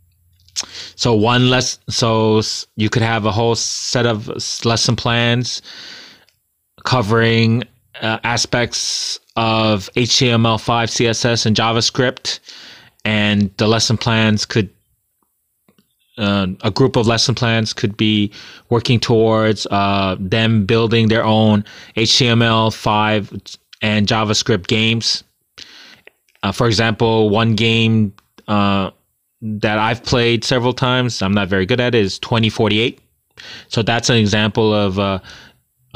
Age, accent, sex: 20-39, American, male